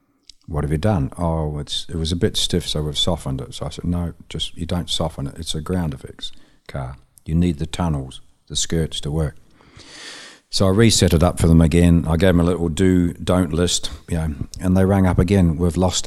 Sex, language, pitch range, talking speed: male, English, 80-90 Hz, 230 wpm